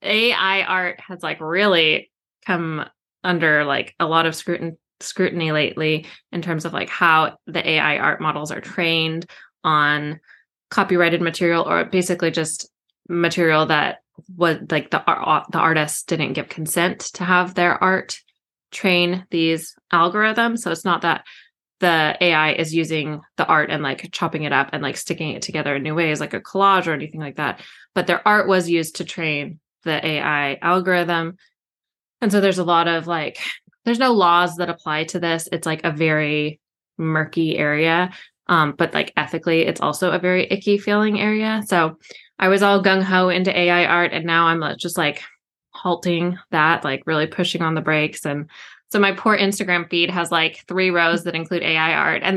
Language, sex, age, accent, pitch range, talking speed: English, female, 20-39, American, 155-185 Hz, 180 wpm